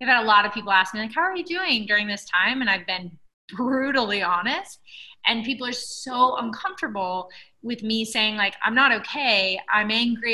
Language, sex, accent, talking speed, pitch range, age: English, female, American, 205 wpm, 200-245 Hz, 30-49